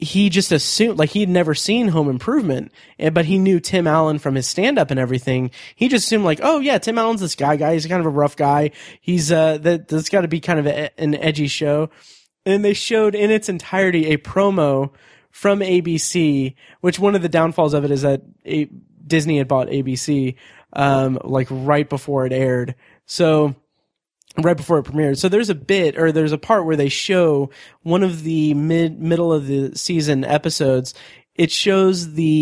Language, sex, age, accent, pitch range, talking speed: English, male, 20-39, American, 140-180 Hz, 195 wpm